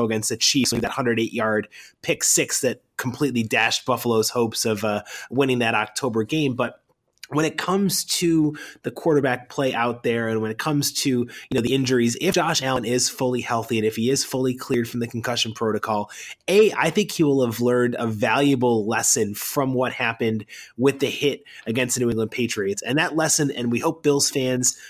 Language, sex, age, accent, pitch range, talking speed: English, male, 30-49, American, 120-145 Hz, 200 wpm